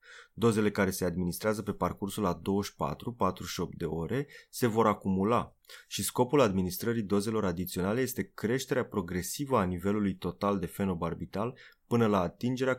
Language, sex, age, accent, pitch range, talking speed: Romanian, male, 20-39, native, 95-115 Hz, 135 wpm